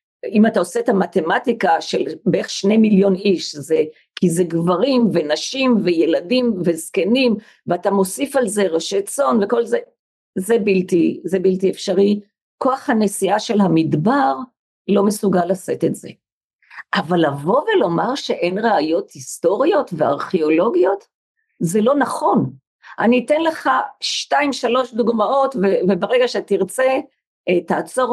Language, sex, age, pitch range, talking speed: Hebrew, female, 50-69, 195-270 Hz, 120 wpm